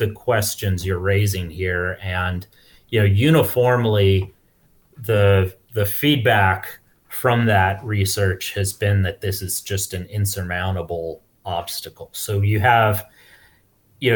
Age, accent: 30-49, American